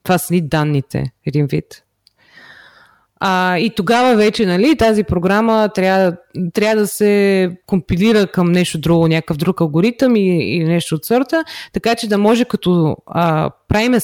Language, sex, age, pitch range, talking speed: Bulgarian, female, 20-39, 160-215 Hz, 150 wpm